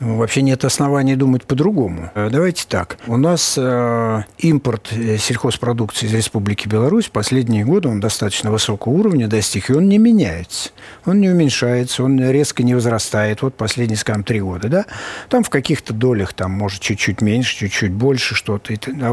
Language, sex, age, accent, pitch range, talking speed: Russian, male, 50-69, native, 110-150 Hz, 160 wpm